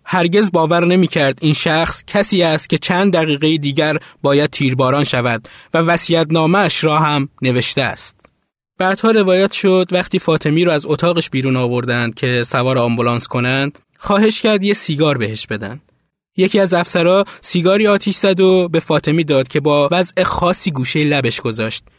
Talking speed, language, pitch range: 160 wpm, Persian, 135-175 Hz